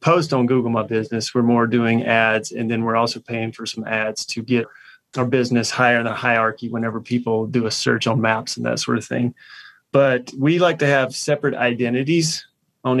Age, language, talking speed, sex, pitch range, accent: 30-49, English, 210 wpm, male, 120-135 Hz, American